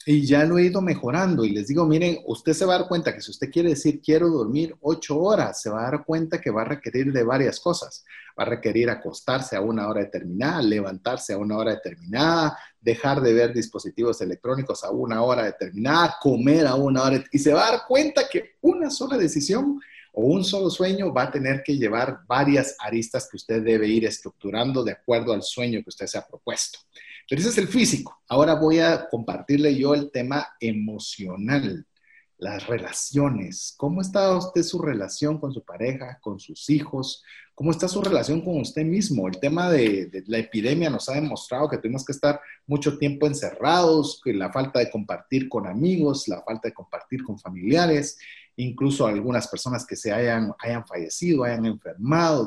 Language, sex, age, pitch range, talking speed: Spanish, male, 40-59, 115-165 Hz, 195 wpm